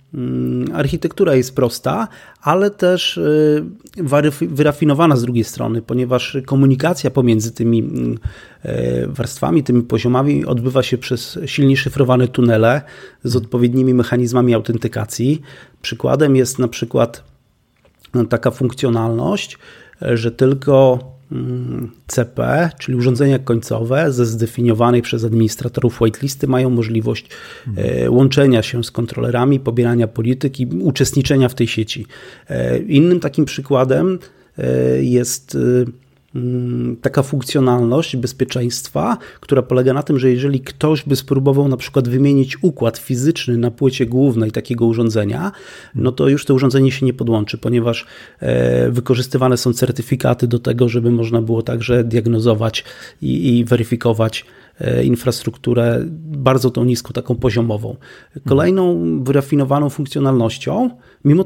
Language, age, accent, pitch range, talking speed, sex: Polish, 30-49, native, 115-140 Hz, 110 wpm, male